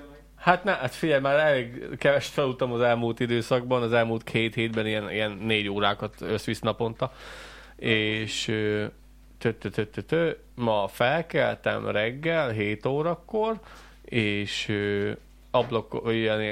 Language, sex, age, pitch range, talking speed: Hungarian, male, 20-39, 100-115 Hz, 125 wpm